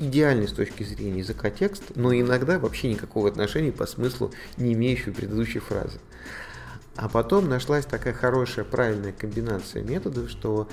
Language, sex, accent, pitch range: Russian, male, native, 105-130 Hz